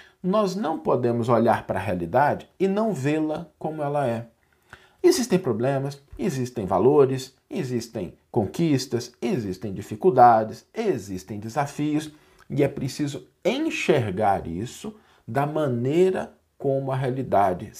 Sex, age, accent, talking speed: male, 50-69, Brazilian, 110 wpm